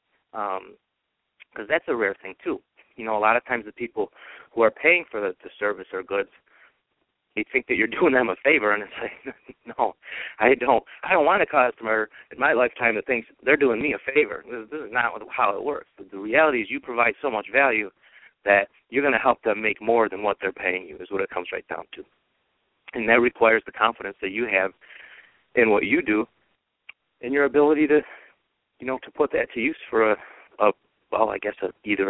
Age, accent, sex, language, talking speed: 30-49, American, male, English, 220 wpm